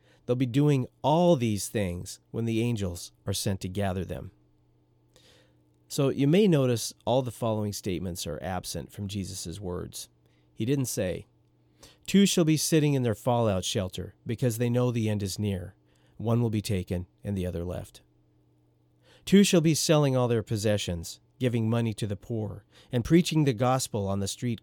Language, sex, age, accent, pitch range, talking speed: English, male, 40-59, American, 90-125 Hz, 175 wpm